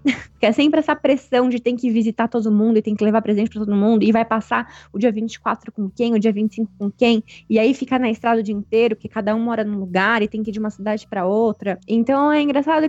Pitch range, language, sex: 200-260 Hz, Portuguese, female